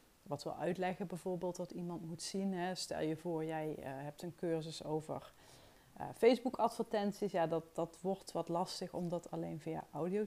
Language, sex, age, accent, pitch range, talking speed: Dutch, female, 30-49, Dutch, 170-205 Hz, 170 wpm